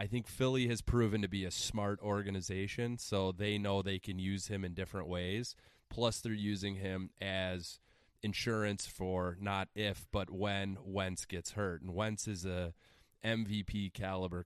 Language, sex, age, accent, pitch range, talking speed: English, male, 20-39, American, 95-115 Hz, 165 wpm